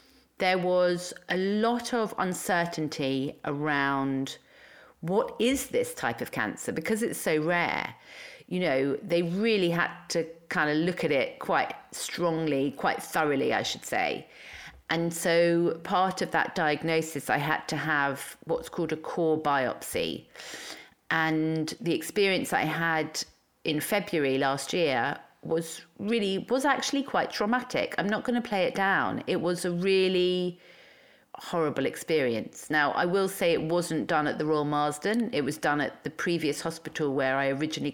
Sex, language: female, English